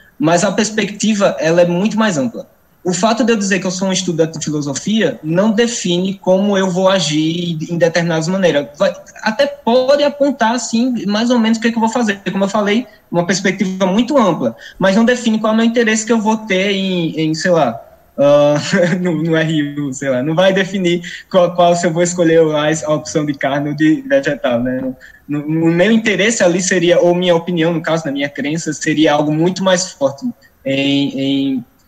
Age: 20-39